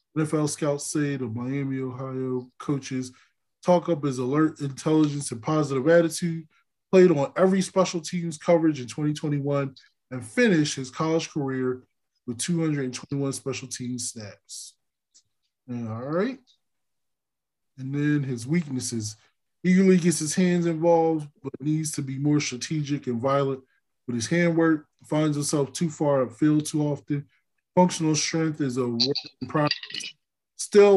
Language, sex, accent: English, male, American